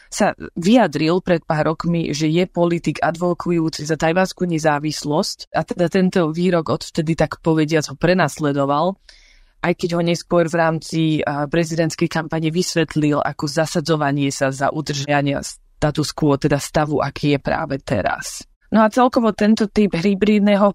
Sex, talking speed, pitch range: female, 145 wpm, 150-195 Hz